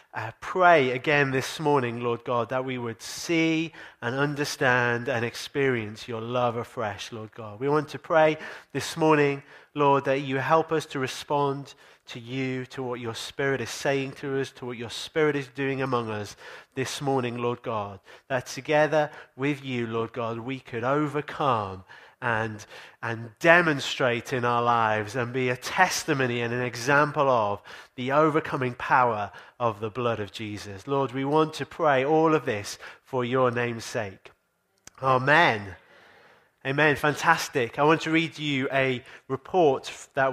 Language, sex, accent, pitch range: English, male, British, 120-150 Hz